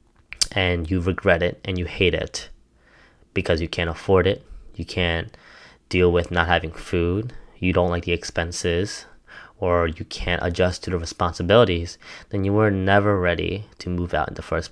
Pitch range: 85-95 Hz